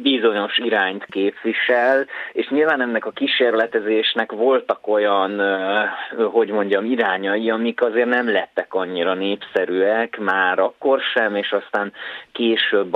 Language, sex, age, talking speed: Hungarian, male, 30-49, 115 wpm